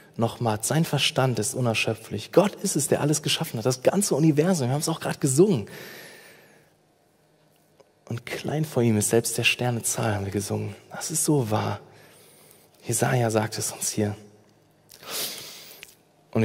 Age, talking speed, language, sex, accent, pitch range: 20-39, 155 wpm, German, male, German, 120-185 Hz